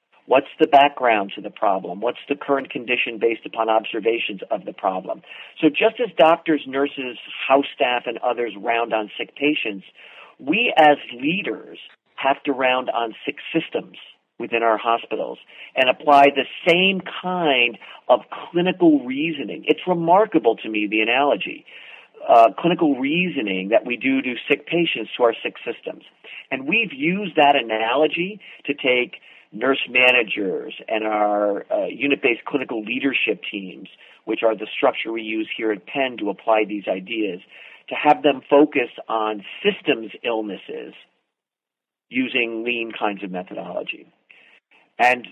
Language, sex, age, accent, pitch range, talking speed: English, male, 50-69, American, 115-155 Hz, 145 wpm